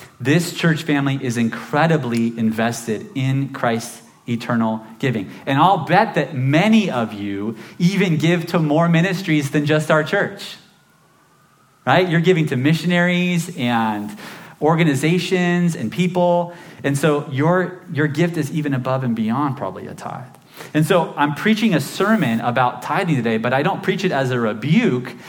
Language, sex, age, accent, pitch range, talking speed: English, male, 30-49, American, 120-175 Hz, 155 wpm